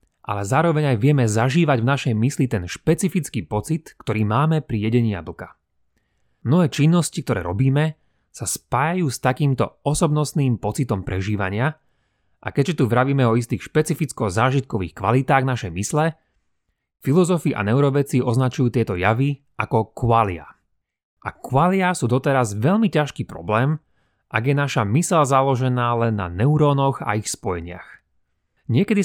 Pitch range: 110-150 Hz